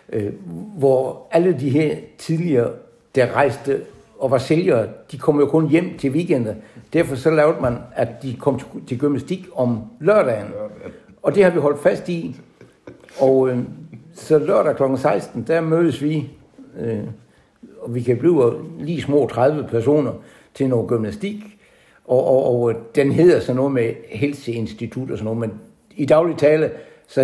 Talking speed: 165 wpm